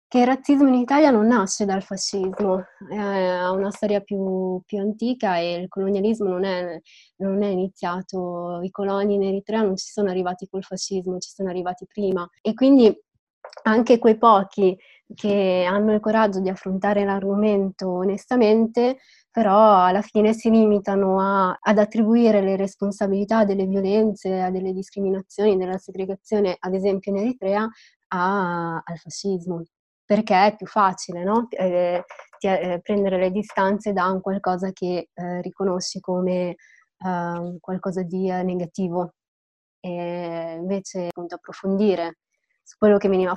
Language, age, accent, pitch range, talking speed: Italian, 20-39, native, 180-205 Hz, 145 wpm